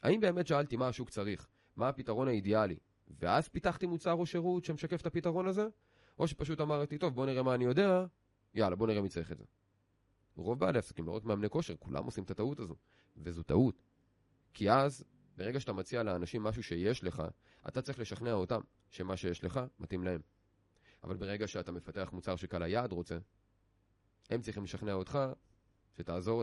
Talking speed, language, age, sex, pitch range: 175 wpm, Hebrew, 30-49, male, 90-130 Hz